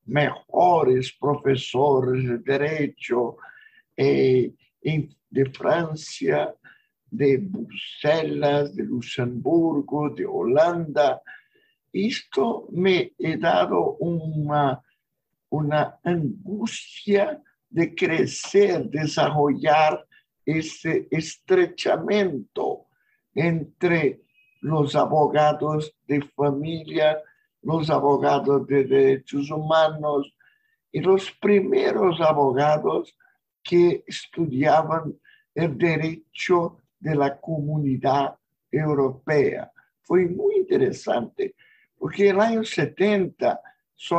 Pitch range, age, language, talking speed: 140-190 Hz, 60-79, Spanish, 75 wpm